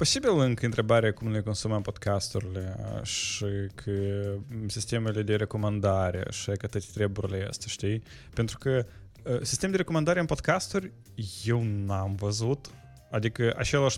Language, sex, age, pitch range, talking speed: English, male, 20-39, 105-125 Hz, 115 wpm